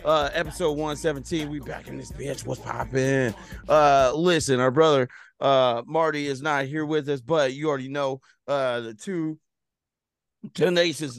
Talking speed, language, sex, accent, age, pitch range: 155 wpm, English, male, American, 30-49, 120-155 Hz